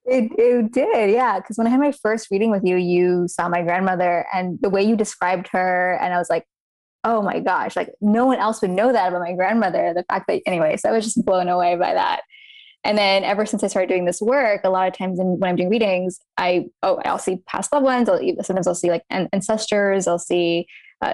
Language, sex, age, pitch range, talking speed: English, female, 20-39, 185-225 Hz, 245 wpm